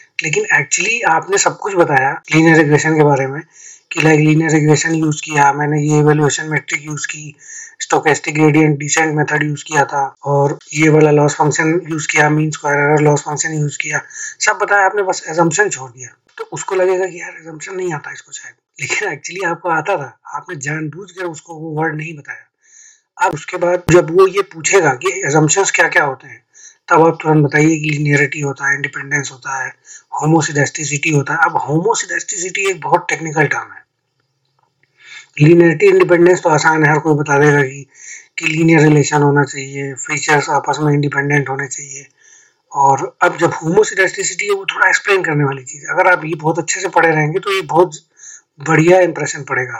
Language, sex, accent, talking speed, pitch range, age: Hindi, male, native, 170 wpm, 150-190 Hz, 20-39